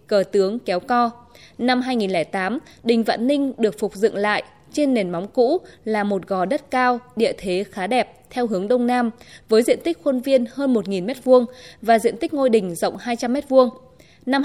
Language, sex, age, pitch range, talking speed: Vietnamese, female, 20-39, 195-260 Hz, 195 wpm